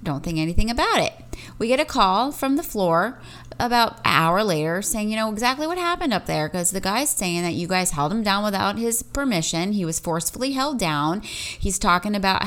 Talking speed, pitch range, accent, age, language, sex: 215 wpm, 160-210 Hz, American, 30-49, English, female